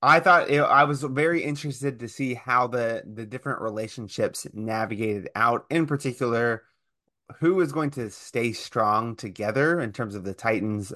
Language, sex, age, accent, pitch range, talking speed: English, male, 20-39, American, 110-135 Hz, 160 wpm